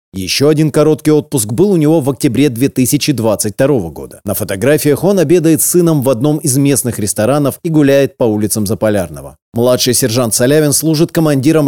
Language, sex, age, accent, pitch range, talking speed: Russian, male, 30-49, native, 120-150 Hz, 165 wpm